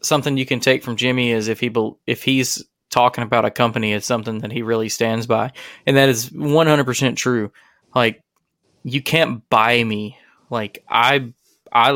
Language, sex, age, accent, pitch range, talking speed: English, male, 20-39, American, 110-125 Hz, 180 wpm